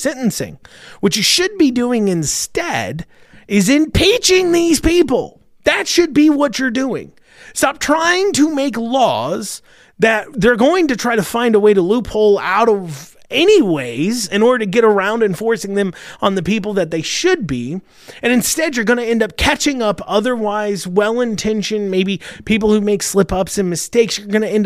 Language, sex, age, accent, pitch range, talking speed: English, male, 30-49, American, 160-240 Hz, 180 wpm